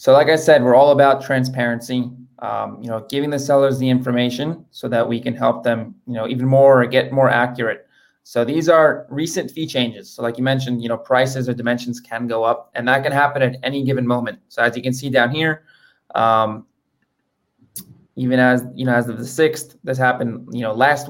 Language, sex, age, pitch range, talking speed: English, male, 20-39, 120-140 Hz, 220 wpm